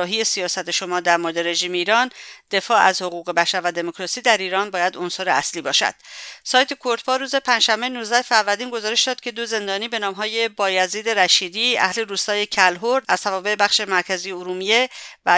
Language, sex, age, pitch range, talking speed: English, female, 50-69, 185-230 Hz, 170 wpm